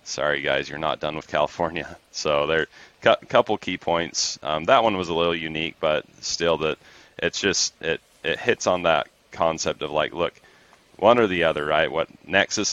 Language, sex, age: English, male, 30-49